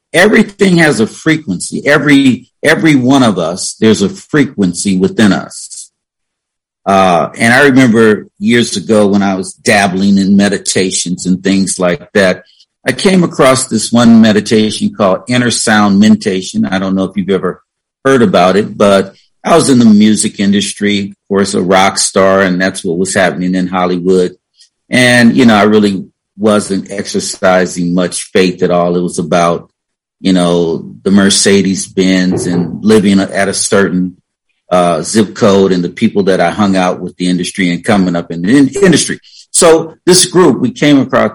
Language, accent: English, American